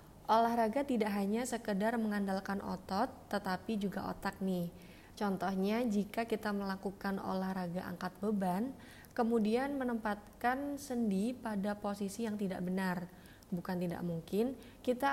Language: Indonesian